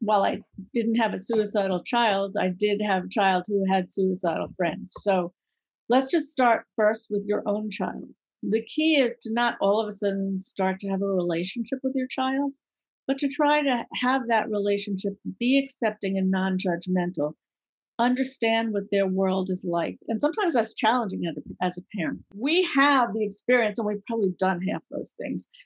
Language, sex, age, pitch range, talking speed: English, female, 50-69, 195-255 Hz, 180 wpm